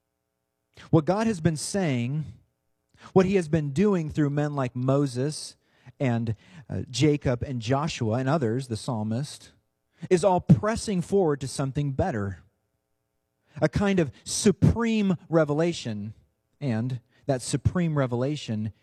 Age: 40-59